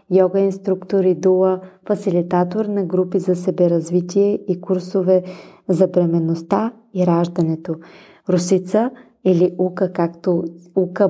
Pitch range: 175-195 Hz